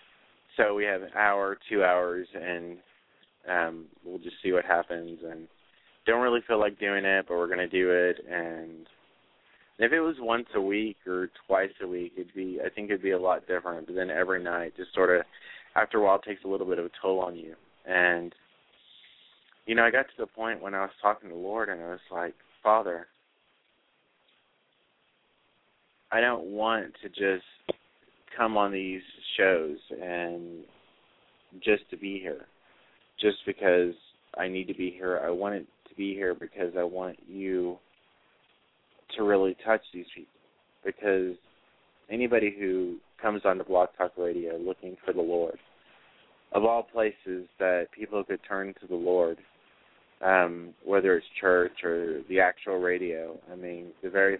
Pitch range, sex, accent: 85-100 Hz, male, American